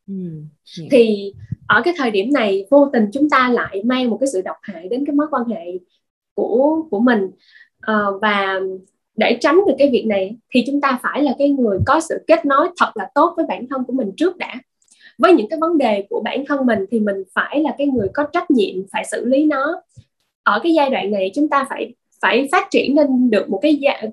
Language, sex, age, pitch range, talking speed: Vietnamese, female, 10-29, 220-295 Hz, 225 wpm